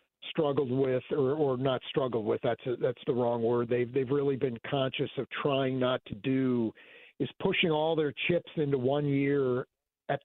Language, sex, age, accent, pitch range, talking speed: English, male, 50-69, American, 125-145 Hz, 185 wpm